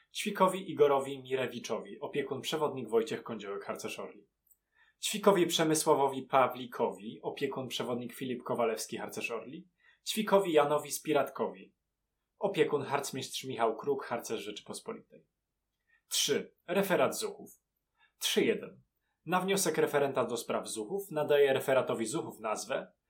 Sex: male